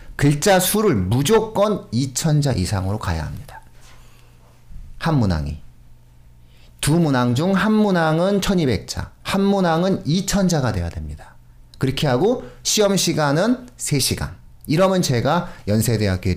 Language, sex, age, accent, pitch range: Korean, male, 40-59, native, 100-160 Hz